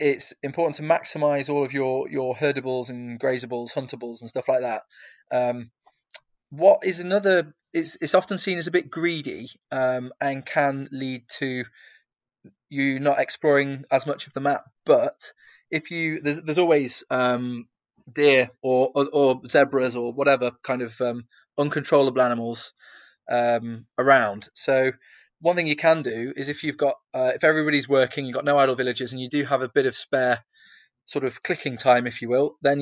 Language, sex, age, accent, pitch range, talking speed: English, male, 20-39, British, 125-145 Hz, 175 wpm